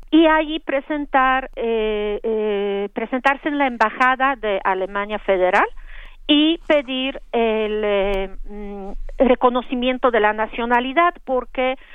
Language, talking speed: Spanish, 110 wpm